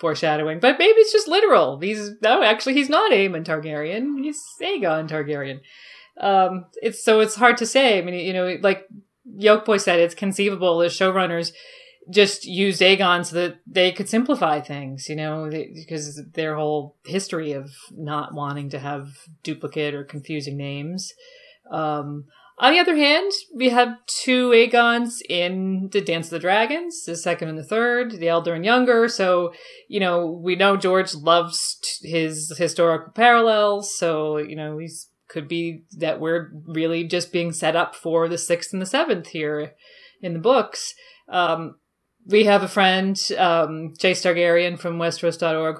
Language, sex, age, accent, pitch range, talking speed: English, female, 40-59, American, 155-205 Hz, 165 wpm